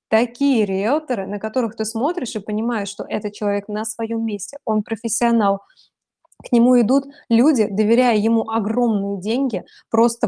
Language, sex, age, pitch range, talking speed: Russian, female, 20-39, 215-260 Hz, 145 wpm